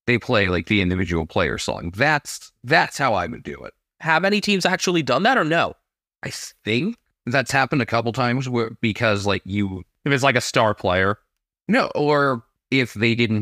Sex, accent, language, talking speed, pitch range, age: male, American, English, 195 wpm, 100-135 Hz, 30-49